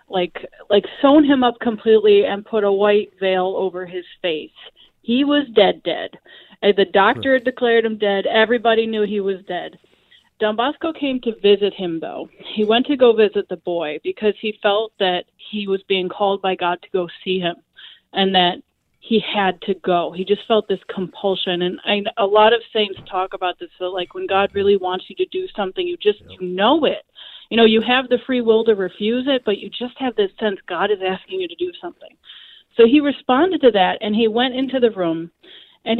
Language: English